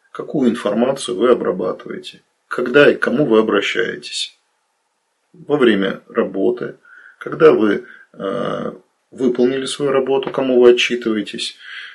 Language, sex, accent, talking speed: Russian, male, native, 110 wpm